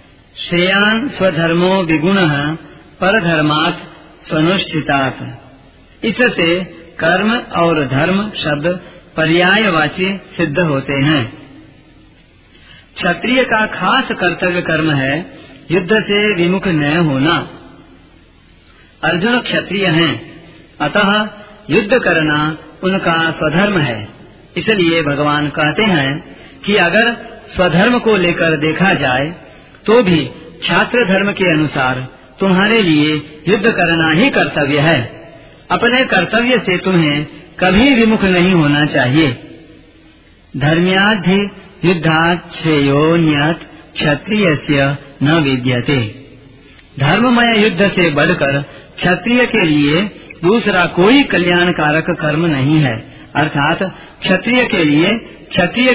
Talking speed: 95 wpm